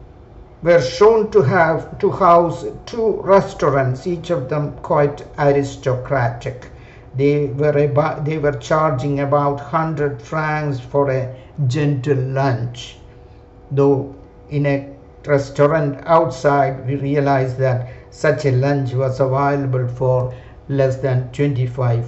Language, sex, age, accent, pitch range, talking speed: English, male, 60-79, Indian, 130-170 Hz, 115 wpm